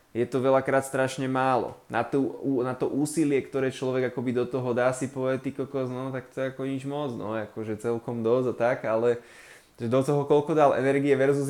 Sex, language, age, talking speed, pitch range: male, Slovak, 20-39, 215 wpm, 115-135 Hz